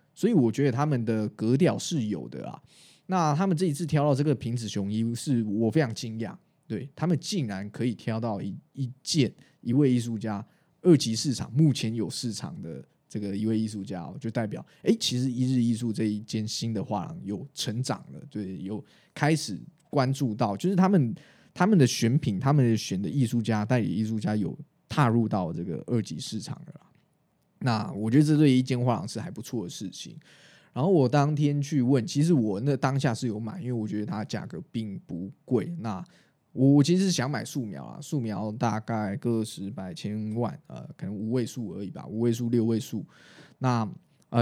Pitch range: 110-145 Hz